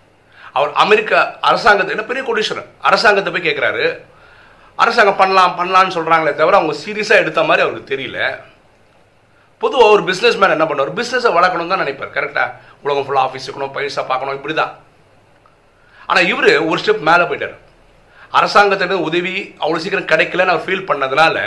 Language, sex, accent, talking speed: Tamil, male, native, 140 wpm